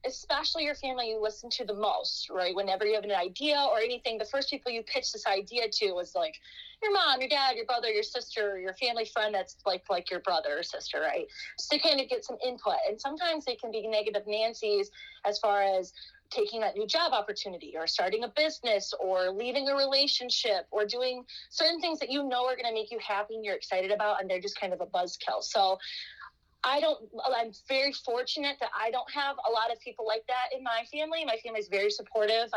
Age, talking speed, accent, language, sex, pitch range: 30-49, 230 wpm, American, English, female, 210-280 Hz